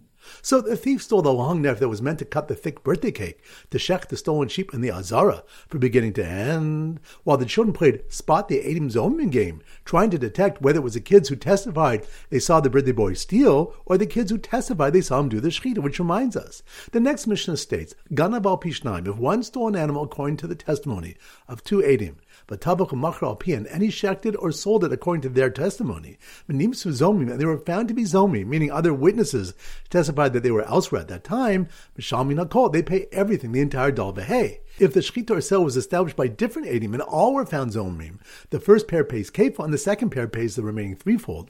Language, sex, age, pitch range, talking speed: English, male, 50-69, 130-200 Hz, 215 wpm